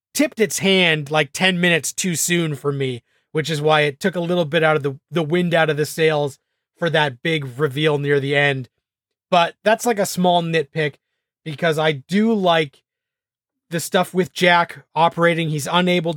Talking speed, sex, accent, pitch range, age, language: 190 wpm, male, American, 155-190 Hz, 30-49, English